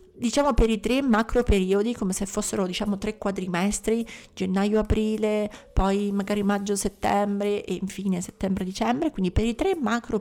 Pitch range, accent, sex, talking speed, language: 190-230 Hz, native, female, 140 wpm, Italian